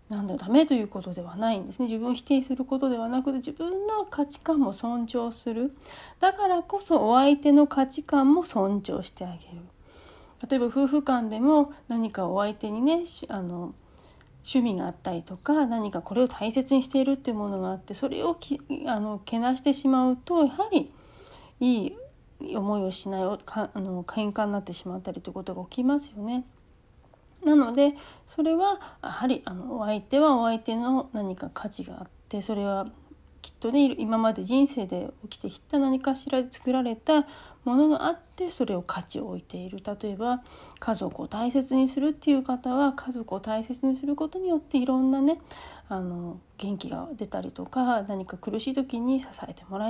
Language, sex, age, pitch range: Japanese, female, 40-59, 210-280 Hz